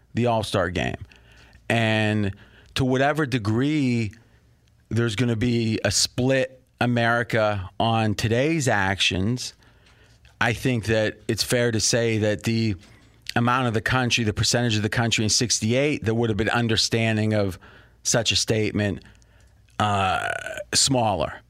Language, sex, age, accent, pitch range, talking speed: English, male, 40-59, American, 105-120 Hz, 135 wpm